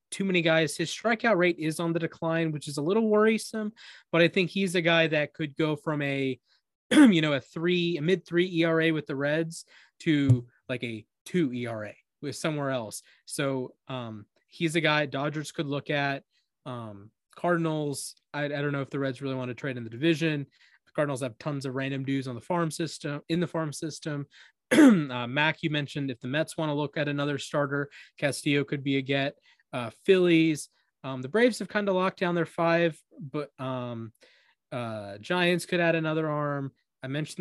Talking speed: 200 wpm